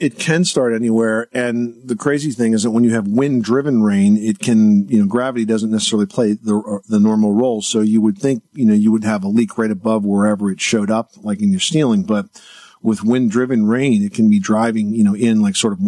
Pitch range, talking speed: 105-150 Hz, 235 wpm